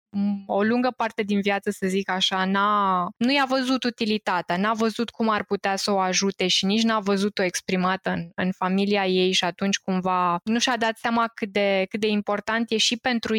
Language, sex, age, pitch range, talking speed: Romanian, female, 20-39, 195-235 Hz, 200 wpm